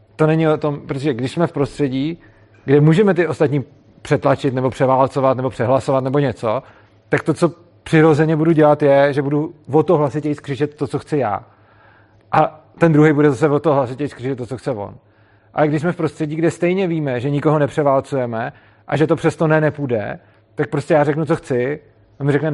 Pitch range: 120-155 Hz